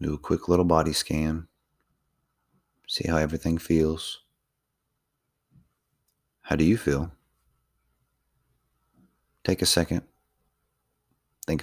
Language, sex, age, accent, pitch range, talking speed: English, male, 30-49, American, 75-85 Hz, 95 wpm